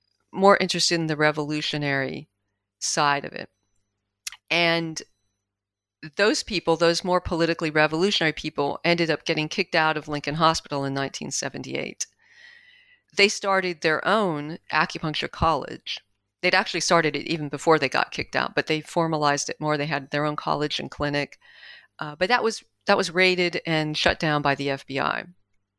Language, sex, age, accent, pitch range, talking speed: English, female, 40-59, American, 140-180 Hz, 155 wpm